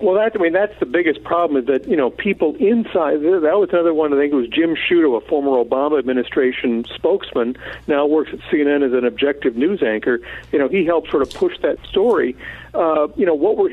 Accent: American